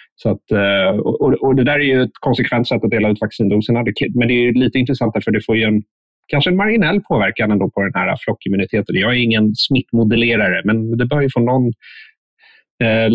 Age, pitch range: 30-49, 100-125 Hz